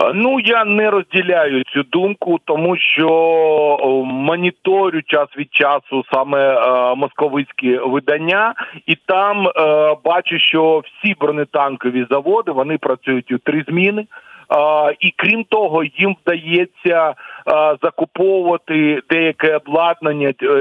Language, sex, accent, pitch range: Ukrainian, male, native, 140-170 Hz